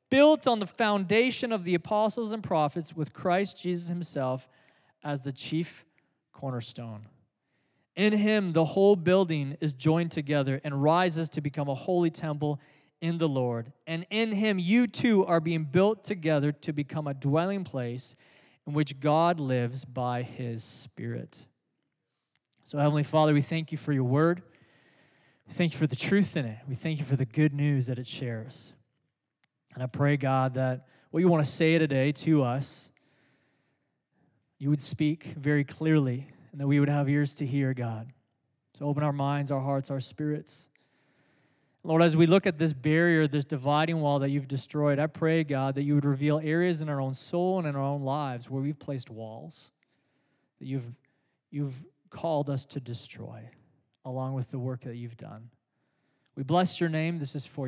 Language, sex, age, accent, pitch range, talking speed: English, male, 20-39, American, 135-165 Hz, 180 wpm